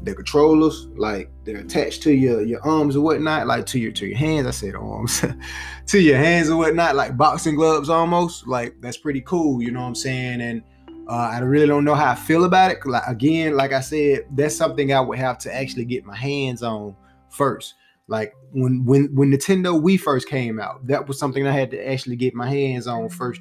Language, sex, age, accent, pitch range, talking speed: English, male, 20-39, American, 120-155 Hz, 225 wpm